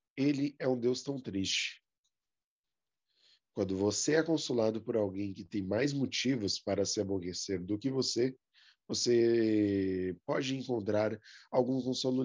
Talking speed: 130 wpm